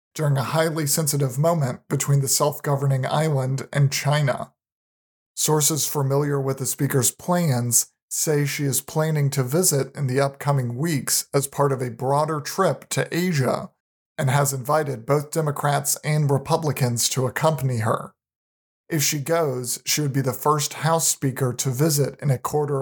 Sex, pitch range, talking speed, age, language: male, 130-150 Hz, 160 wpm, 40-59, English